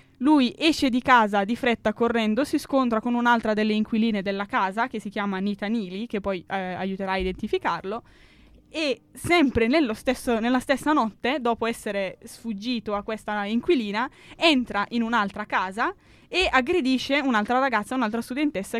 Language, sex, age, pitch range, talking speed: Italian, female, 10-29, 200-235 Hz, 155 wpm